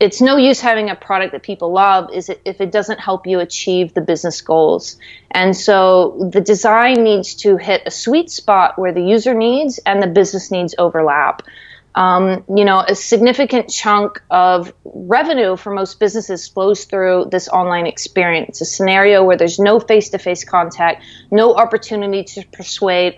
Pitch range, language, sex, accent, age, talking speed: 180-215 Hz, English, female, American, 30-49, 165 wpm